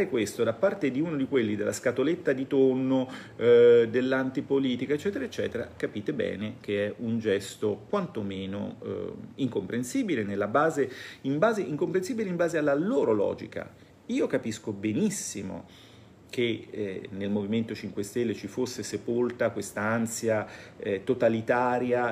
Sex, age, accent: male, 40-59, native